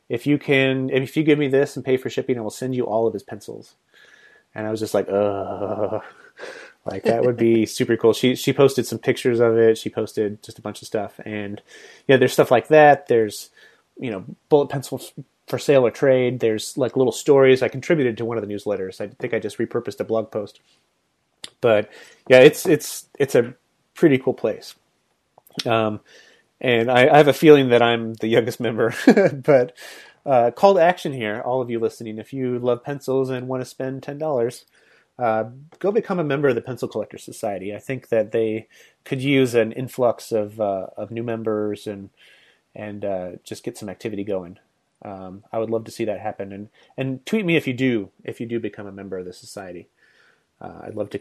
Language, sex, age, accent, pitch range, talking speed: English, male, 30-49, American, 105-130 Hz, 210 wpm